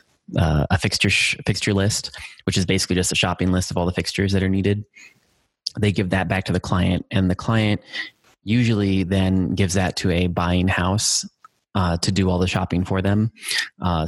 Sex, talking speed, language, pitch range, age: male, 200 wpm, English, 90-100 Hz, 20-39